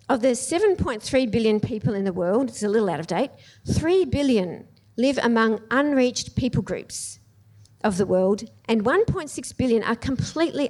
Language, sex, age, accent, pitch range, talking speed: English, female, 50-69, Australian, 170-250 Hz, 165 wpm